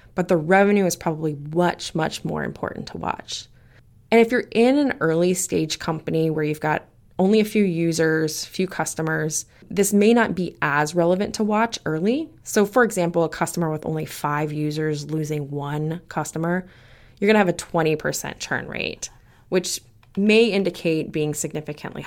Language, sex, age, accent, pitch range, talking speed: English, female, 20-39, American, 155-210 Hz, 165 wpm